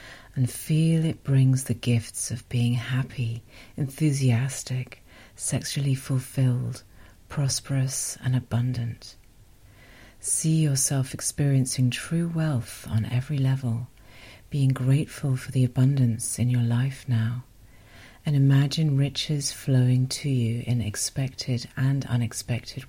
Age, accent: 50-69, British